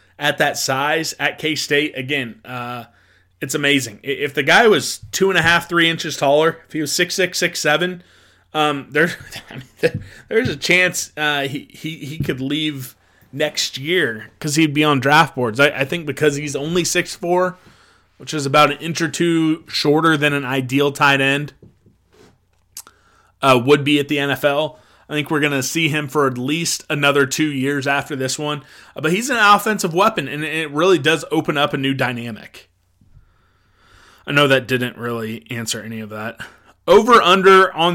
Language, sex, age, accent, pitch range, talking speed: English, male, 20-39, American, 130-155 Hz, 180 wpm